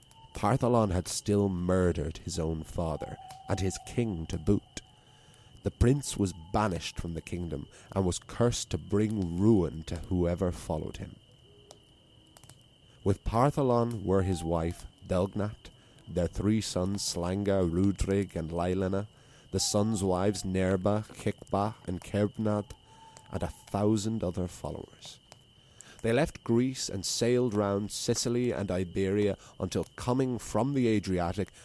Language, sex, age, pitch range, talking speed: English, male, 30-49, 90-120 Hz, 130 wpm